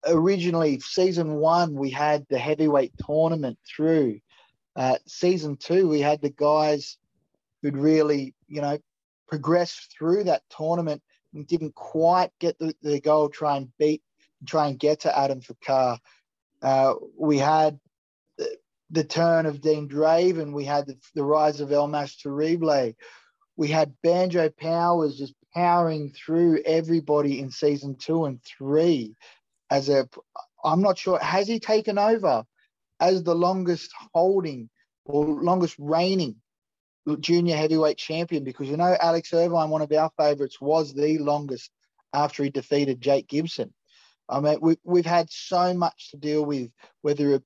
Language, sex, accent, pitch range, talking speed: English, male, Australian, 145-165 Hz, 150 wpm